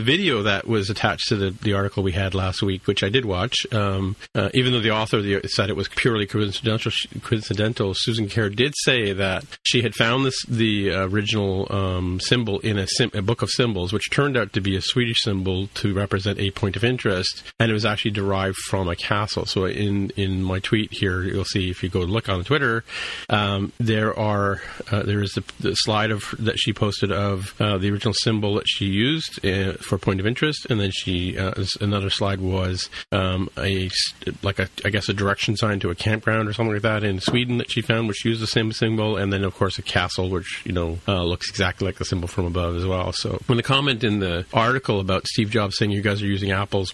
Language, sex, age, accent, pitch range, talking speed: English, male, 40-59, American, 95-115 Hz, 235 wpm